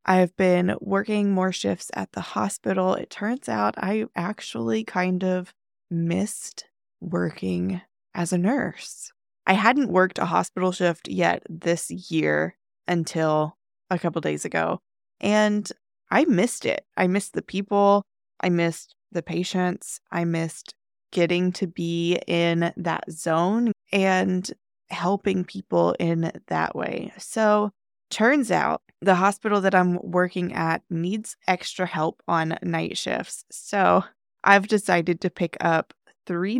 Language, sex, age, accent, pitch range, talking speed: English, female, 20-39, American, 165-195 Hz, 135 wpm